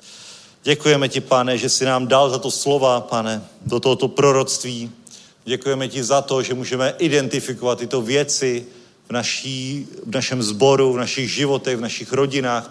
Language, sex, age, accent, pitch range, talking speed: Czech, male, 40-59, native, 130-155 Hz, 160 wpm